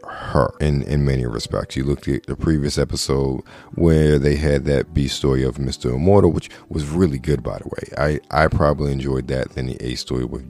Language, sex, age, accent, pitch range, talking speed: English, male, 40-59, American, 65-80 Hz, 210 wpm